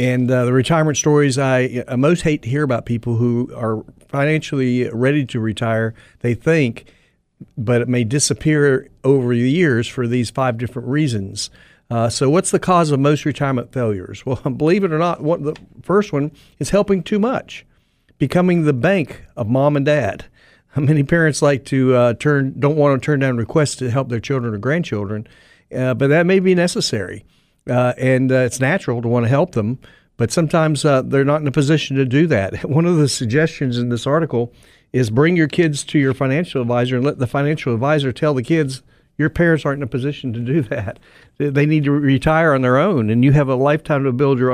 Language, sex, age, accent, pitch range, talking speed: English, male, 50-69, American, 120-150 Hz, 205 wpm